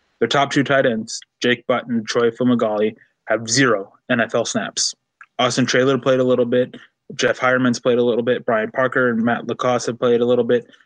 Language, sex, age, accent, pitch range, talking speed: English, male, 20-39, American, 115-125 Hz, 195 wpm